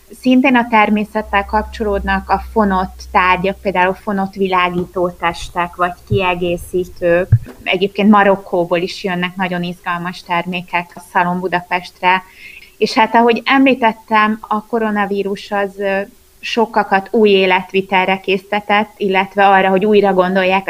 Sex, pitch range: female, 180-205 Hz